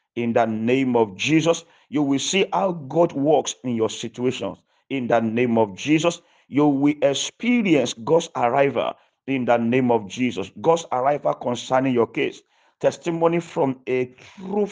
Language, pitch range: English, 115-150 Hz